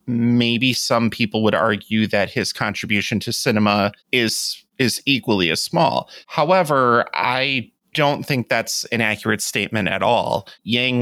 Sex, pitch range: male, 105-125 Hz